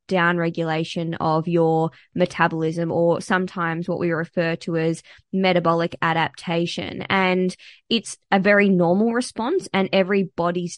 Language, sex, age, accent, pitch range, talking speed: English, female, 20-39, Australian, 170-185 Hz, 115 wpm